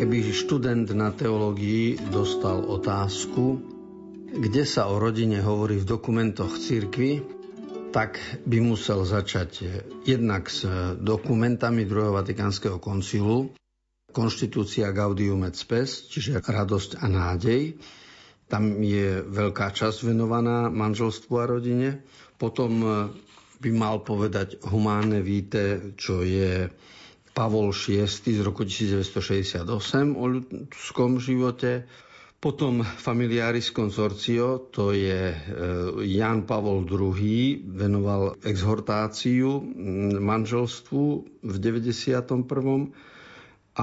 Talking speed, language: 95 wpm, Slovak